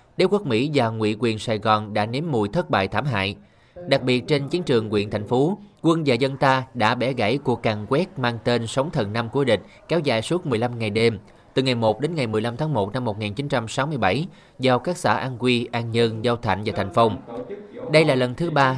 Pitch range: 115-145 Hz